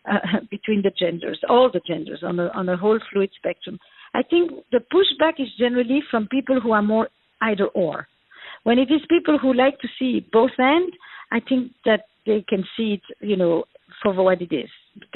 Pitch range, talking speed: 200-260 Hz, 200 wpm